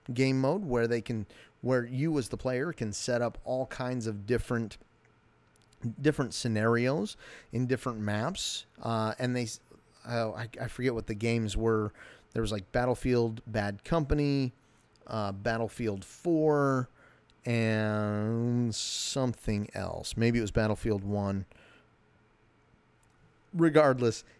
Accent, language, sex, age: American, English, male, 30-49